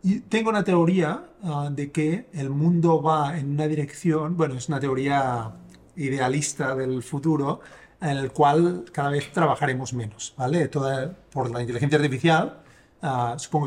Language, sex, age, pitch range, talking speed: Spanish, male, 30-49, 130-160 Hz, 155 wpm